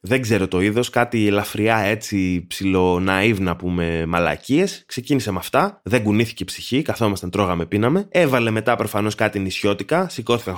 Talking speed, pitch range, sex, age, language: 150 wpm, 95-140 Hz, male, 20-39, Greek